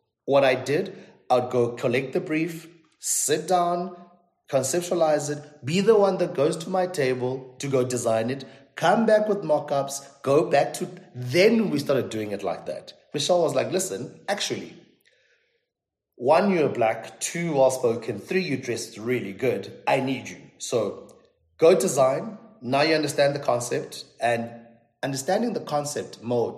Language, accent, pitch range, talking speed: English, South African, 115-155 Hz, 155 wpm